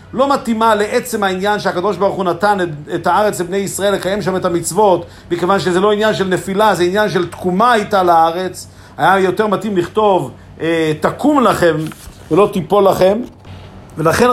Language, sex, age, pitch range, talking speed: Hebrew, male, 50-69, 155-200 Hz, 160 wpm